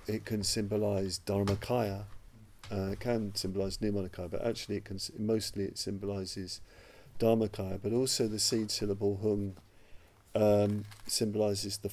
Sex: male